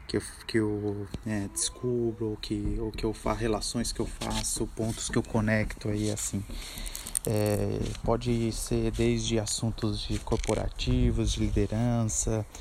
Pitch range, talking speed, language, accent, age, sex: 105-120 Hz, 145 wpm, English, Brazilian, 20-39, male